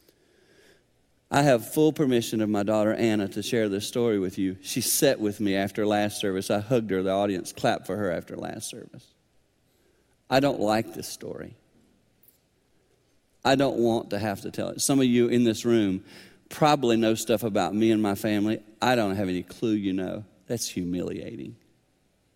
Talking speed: 185 wpm